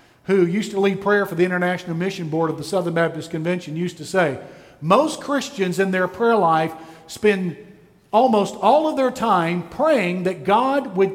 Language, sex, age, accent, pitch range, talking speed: English, male, 50-69, American, 175-215 Hz, 185 wpm